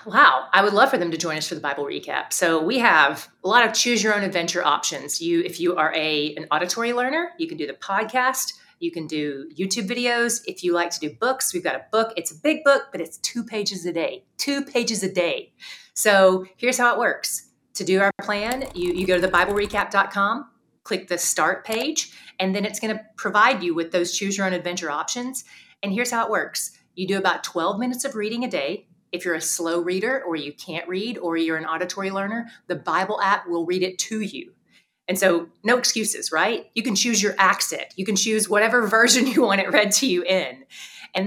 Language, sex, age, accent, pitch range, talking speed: English, female, 30-49, American, 175-230 Hz, 220 wpm